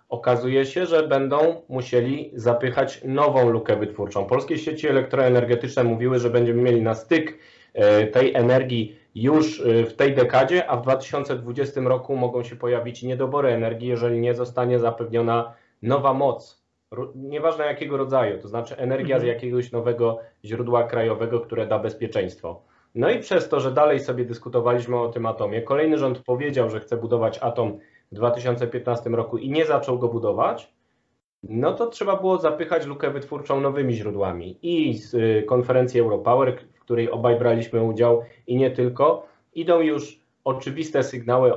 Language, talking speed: Polish, 150 wpm